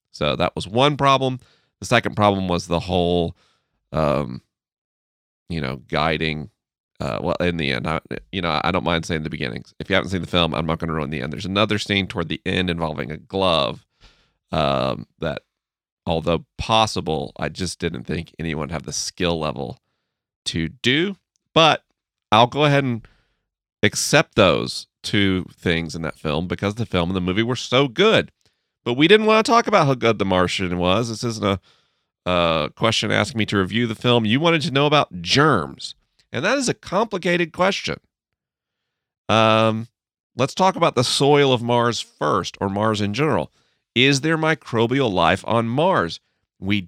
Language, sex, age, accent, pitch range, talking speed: English, male, 40-59, American, 85-120 Hz, 180 wpm